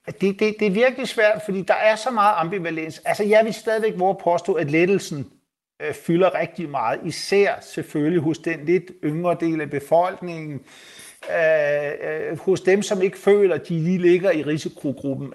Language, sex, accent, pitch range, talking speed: Danish, male, native, 145-185 Hz, 170 wpm